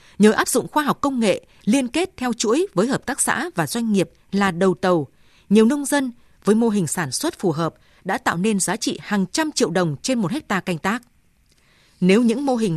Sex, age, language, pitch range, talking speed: female, 20-39, Vietnamese, 180-245 Hz, 230 wpm